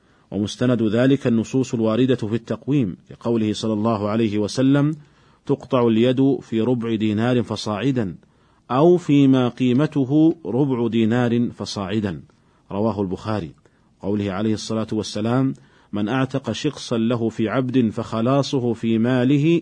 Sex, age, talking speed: male, 40-59, 120 wpm